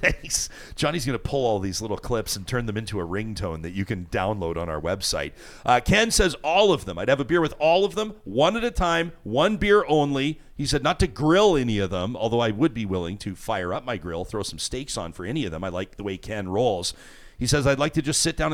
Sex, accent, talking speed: male, American, 270 wpm